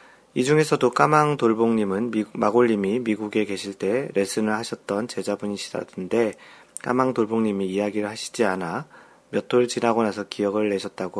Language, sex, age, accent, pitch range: Korean, male, 40-59, native, 100-120 Hz